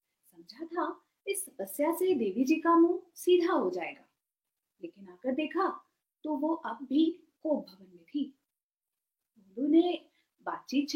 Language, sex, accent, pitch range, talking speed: Hindi, female, native, 275-340 Hz, 110 wpm